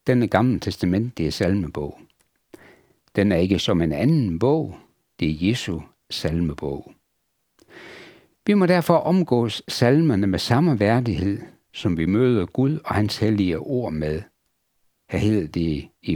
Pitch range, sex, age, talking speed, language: 95-145 Hz, male, 60-79, 140 wpm, Danish